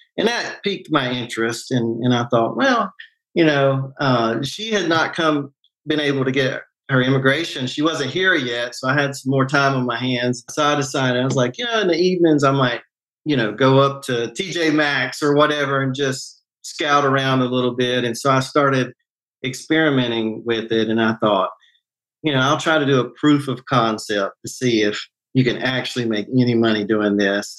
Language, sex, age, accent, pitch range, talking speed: English, male, 40-59, American, 120-150 Hz, 205 wpm